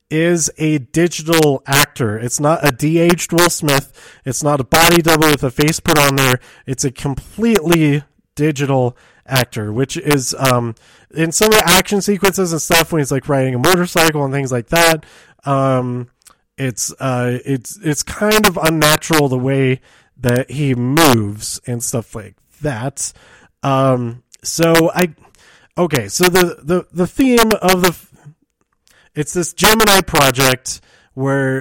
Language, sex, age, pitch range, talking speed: English, male, 20-39, 135-170 Hz, 150 wpm